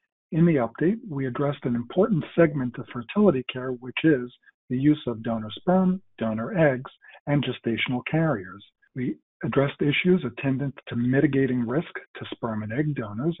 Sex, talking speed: male, 155 wpm